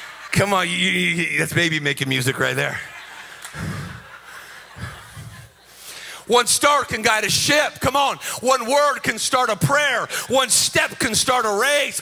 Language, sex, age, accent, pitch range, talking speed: English, male, 40-59, American, 230-275 Hz, 140 wpm